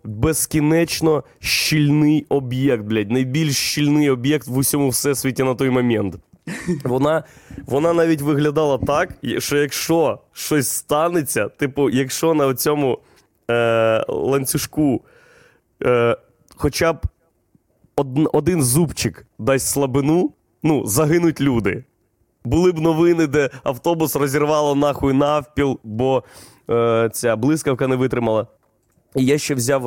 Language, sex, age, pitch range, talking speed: Ukrainian, male, 20-39, 120-150 Hz, 115 wpm